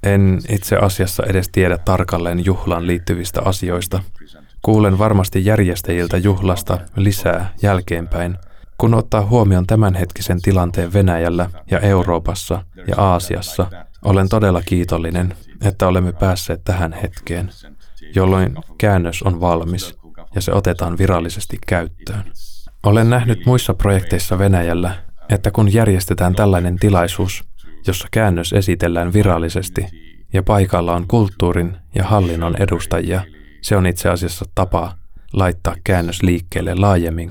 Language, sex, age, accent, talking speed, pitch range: Finnish, male, 20-39, native, 115 wpm, 85-100 Hz